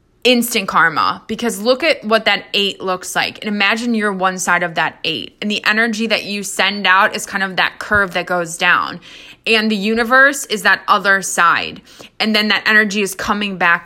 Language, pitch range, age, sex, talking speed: English, 190-230 Hz, 20-39, female, 205 wpm